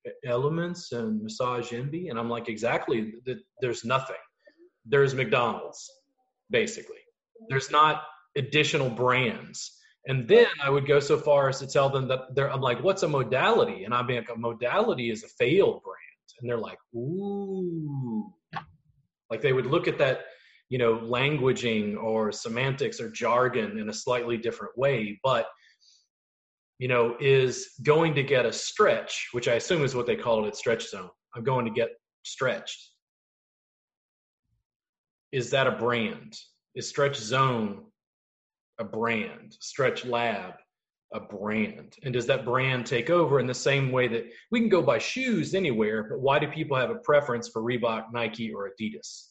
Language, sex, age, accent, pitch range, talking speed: English, male, 30-49, American, 120-170 Hz, 160 wpm